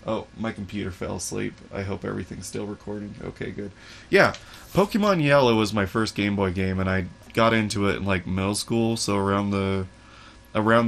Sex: male